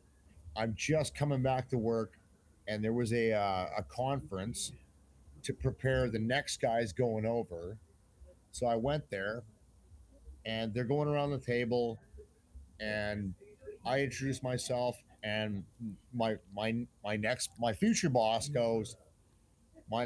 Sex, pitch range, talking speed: male, 100-130 Hz, 130 wpm